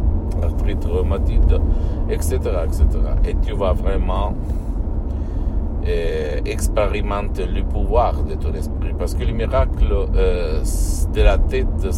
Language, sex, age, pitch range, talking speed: Italian, male, 60-79, 75-85 Hz, 110 wpm